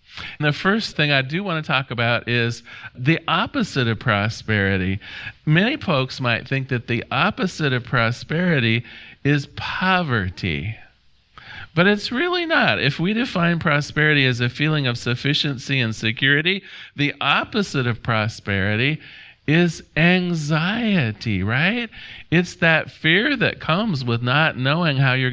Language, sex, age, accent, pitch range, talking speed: English, male, 40-59, American, 115-160 Hz, 135 wpm